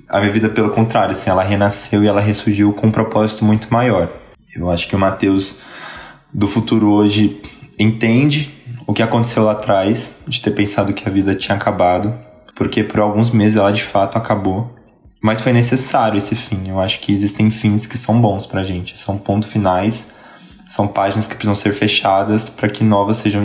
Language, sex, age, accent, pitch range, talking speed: Portuguese, male, 20-39, Brazilian, 95-110 Hz, 190 wpm